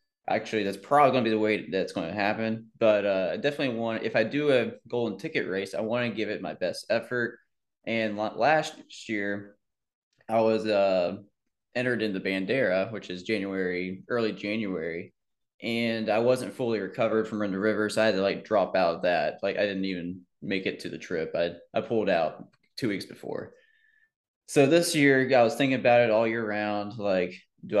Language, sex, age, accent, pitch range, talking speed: English, male, 20-39, American, 95-115 Hz, 200 wpm